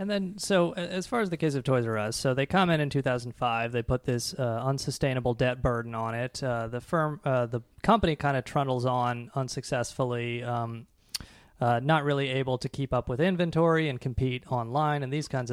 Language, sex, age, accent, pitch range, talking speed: English, male, 30-49, American, 125-155 Hz, 210 wpm